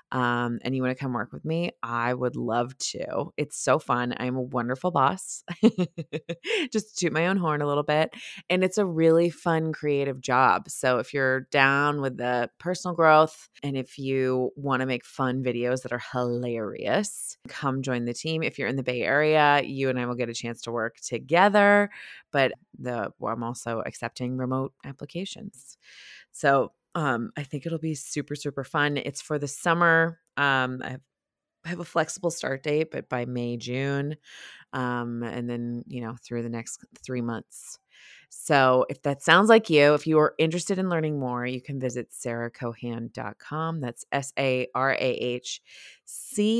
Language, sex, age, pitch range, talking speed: English, female, 20-39, 125-160 Hz, 180 wpm